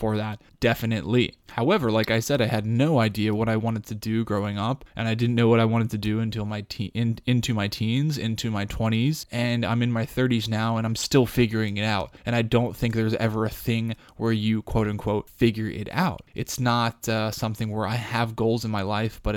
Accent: American